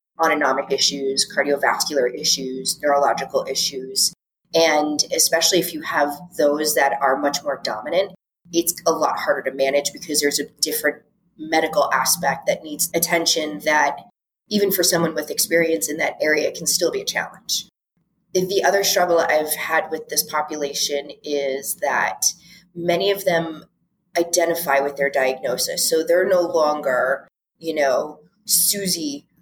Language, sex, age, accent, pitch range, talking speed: English, female, 20-39, American, 145-175 Hz, 145 wpm